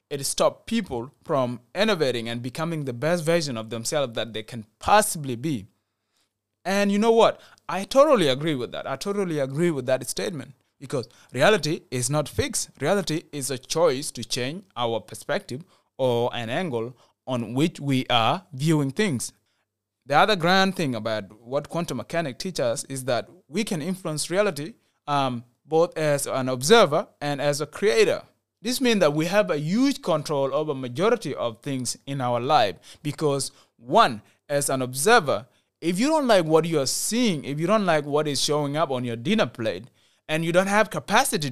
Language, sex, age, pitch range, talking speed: English, male, 20-39, 130-180 Hz, 180 wpm